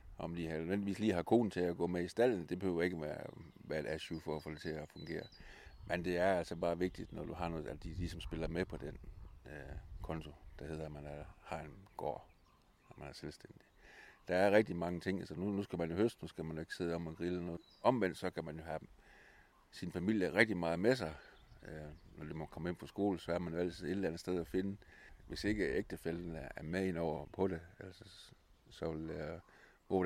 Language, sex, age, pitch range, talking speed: Danish, male, 60-79, 80-95 Hz, 250 wpm